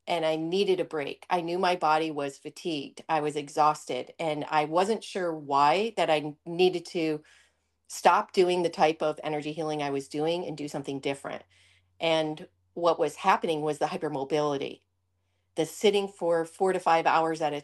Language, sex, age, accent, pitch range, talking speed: English, female, 40-59, American, 150-170 Hz, 180 wpm